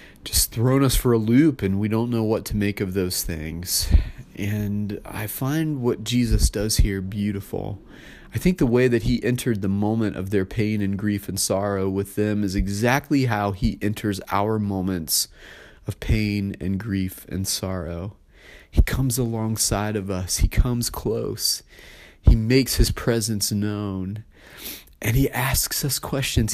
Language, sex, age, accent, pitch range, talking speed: English, male, 30-49, American, 100-130 Hz, 165 wpm